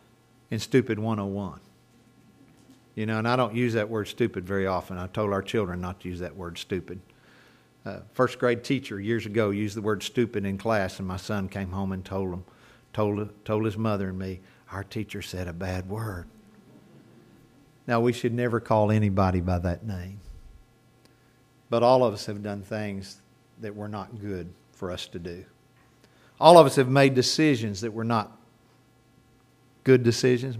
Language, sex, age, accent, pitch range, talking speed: English, male, 50-69, American, 110-155 Hz, 180 wpm